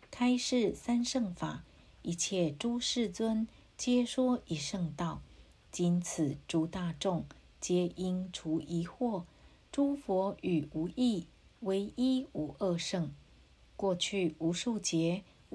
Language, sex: Chinese, female